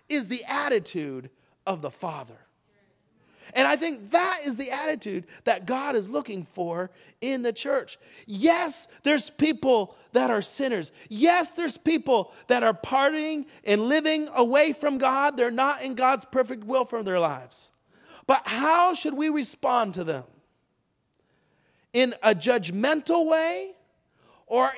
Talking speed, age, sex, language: 145 wpm, 40-59, male, English